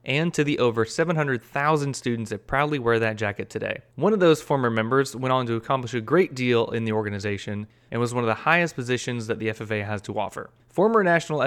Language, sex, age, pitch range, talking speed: English, male, 30-49, 115-150 Hz, 220 wpm